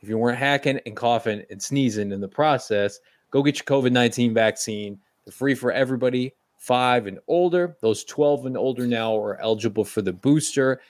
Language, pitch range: English, 110-145 Hz